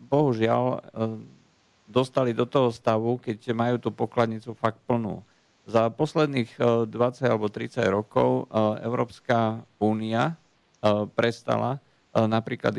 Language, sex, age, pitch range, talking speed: Slovak, male, 50-69, 105-120 Hz, 100 wpm